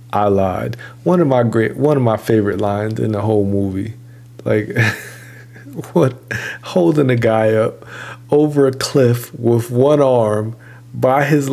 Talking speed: 150 wpm